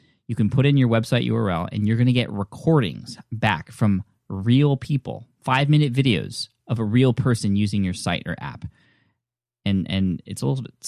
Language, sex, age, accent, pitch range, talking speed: English, male, 10-29, American, 100-130 Hz, 190 wpm